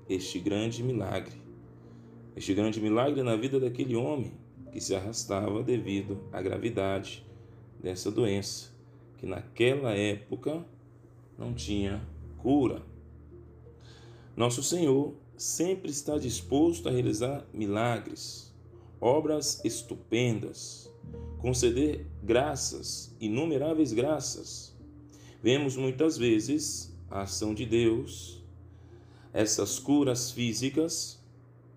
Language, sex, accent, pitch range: Portuguese, male, Brazilian, 105-130 Hz